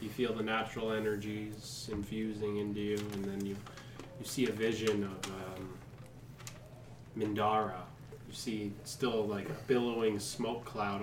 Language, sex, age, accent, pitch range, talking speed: English, male, 20-39, American, 110-130 Hz, 140 wpm